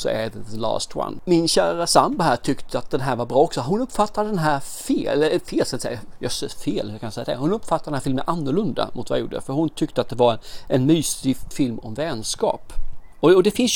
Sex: male